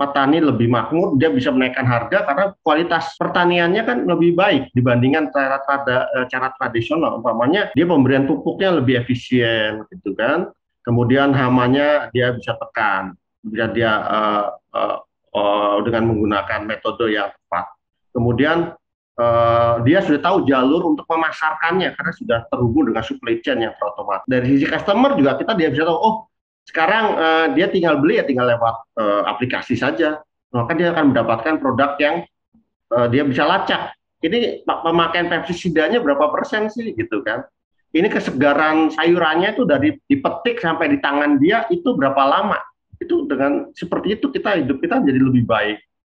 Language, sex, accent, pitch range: Indonesian, male, native, 120-170 Hz